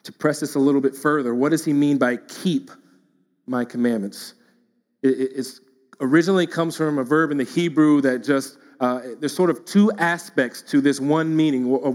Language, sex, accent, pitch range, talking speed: English, male, American, 140-170 Hz, 185 wpm